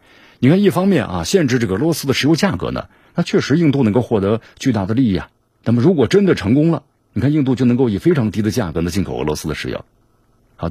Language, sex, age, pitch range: Chinese, male, 50-69, 95-130 Hz